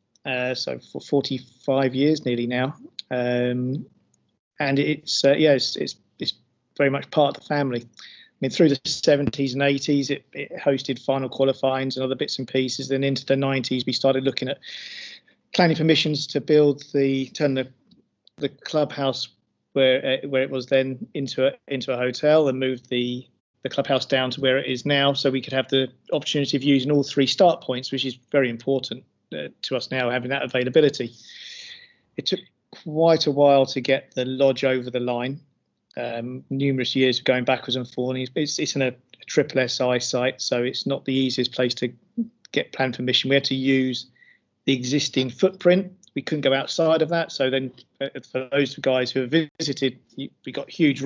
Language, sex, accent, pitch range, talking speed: English, male, British, 130-145 Hz, 190 wpm